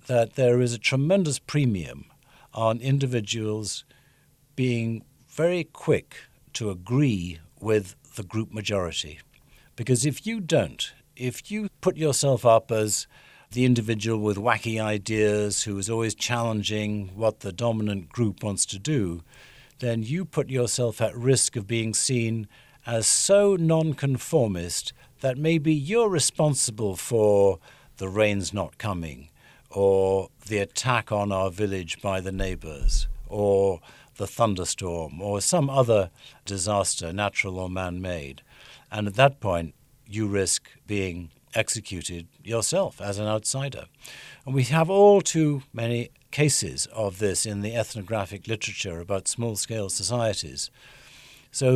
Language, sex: English, male